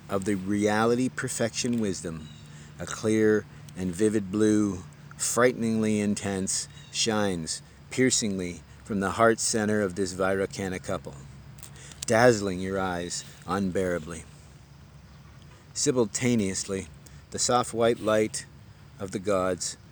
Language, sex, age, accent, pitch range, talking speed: English, male, 40-59, American, 95-120 Hz, 100 wpm